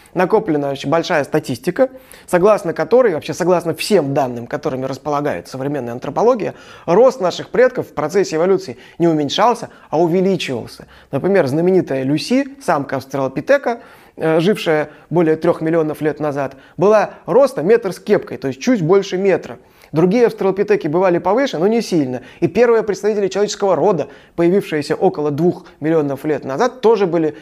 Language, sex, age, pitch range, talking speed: Russian, male, 20-39, 145-195 Hz, 140 wpm